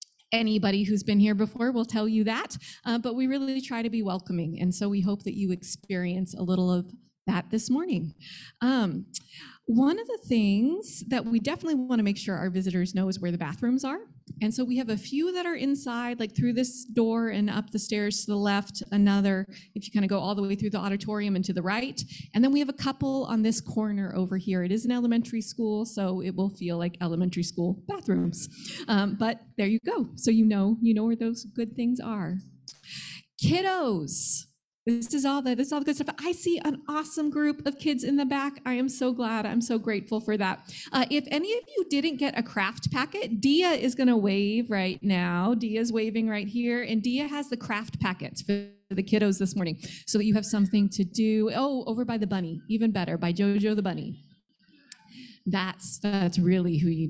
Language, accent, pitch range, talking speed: English, American, 195-245 Hz, 220 wpm